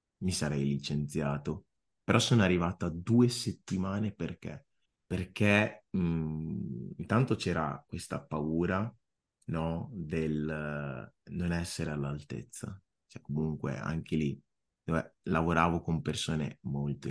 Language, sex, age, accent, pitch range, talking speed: Italian, male, 30-49, native, 85-105 Hz, 105 wpm